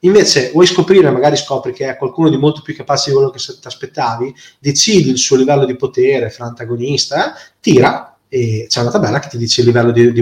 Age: 20-39